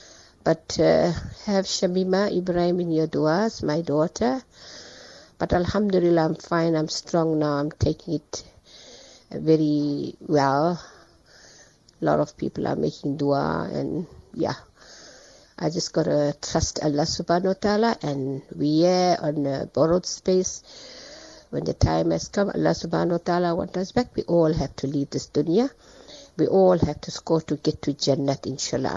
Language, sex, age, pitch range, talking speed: English, female, 50-69, 145-185 Hz, 155 wpm